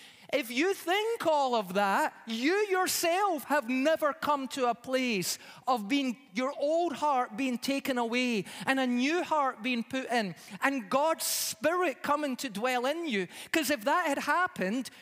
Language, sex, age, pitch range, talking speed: English, male, 30-49, 225-300 Hz, 165 wpm